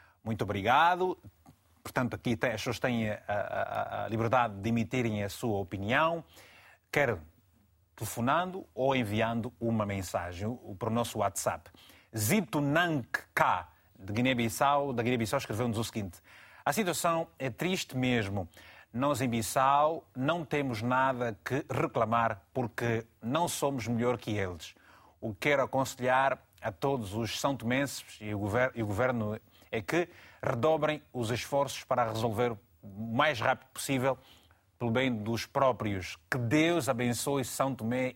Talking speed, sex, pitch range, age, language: 130 wpm, male, 110-145 Hz, 30-49, Portuguese